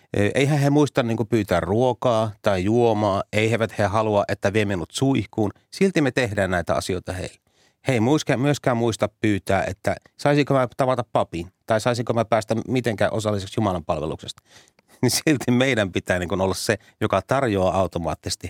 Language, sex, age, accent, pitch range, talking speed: Finnish, male, 30-49, native, 95-120 Hz, 165 wpm